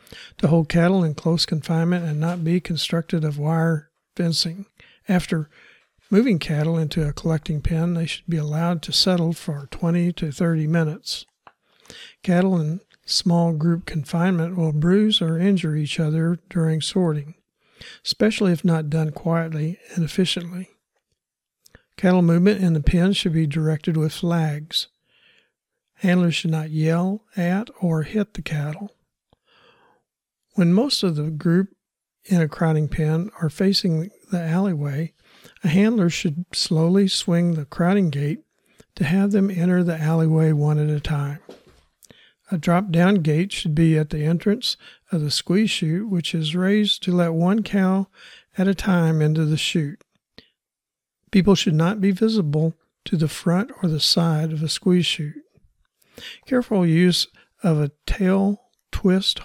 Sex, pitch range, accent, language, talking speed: male, 160-190 Hz, American, English, 150 wpm